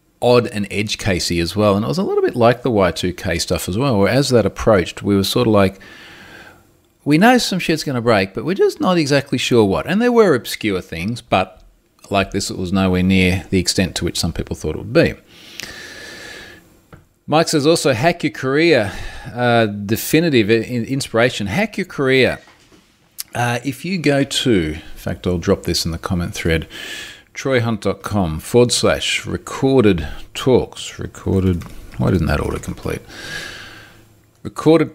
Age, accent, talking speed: 40-59, Australian, 175 wpm